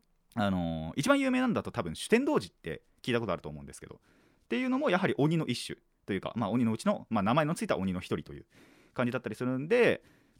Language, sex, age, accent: Japanese, male, 30-49, native